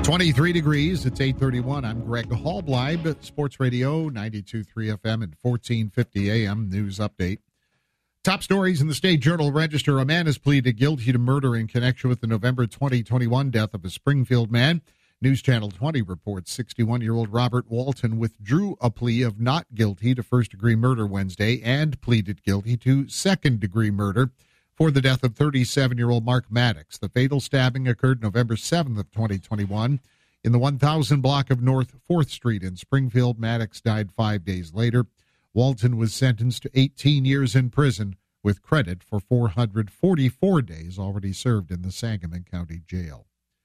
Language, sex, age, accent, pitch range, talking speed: English, male, 50-69, American, 110-140 Hz, 155 wpm